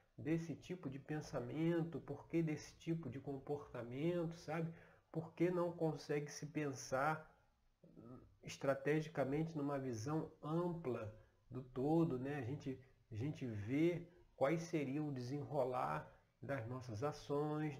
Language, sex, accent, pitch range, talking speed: Portuguese, male, Brazilian, 125-160 Hz, 120 wpm